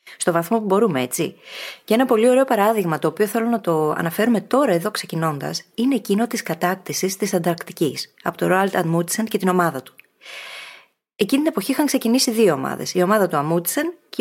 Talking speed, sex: 185 wpm, female